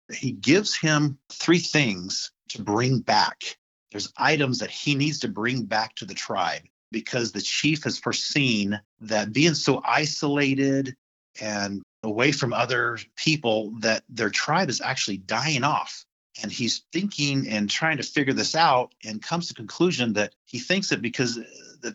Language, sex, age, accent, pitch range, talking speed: English, male, 40-59, American, 110-140 Hz, 160 wpm